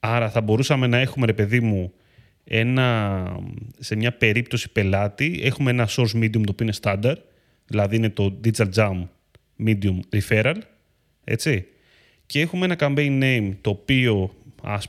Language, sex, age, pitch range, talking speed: Greek, male, 30-49, 105-135 Hz, 145 wpm